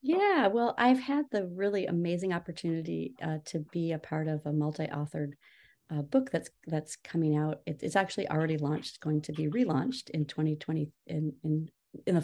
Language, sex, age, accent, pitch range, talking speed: English, female, 30-49, American, 155-180 Hz, 175 wpm